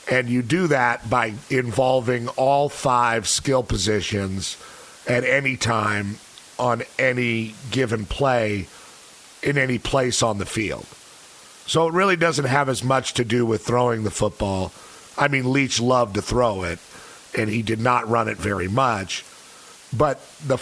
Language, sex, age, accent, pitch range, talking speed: English, male, 50-69, American, 105-125 Hz, 155 wpm